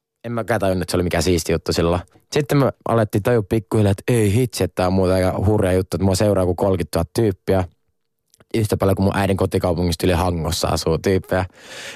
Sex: male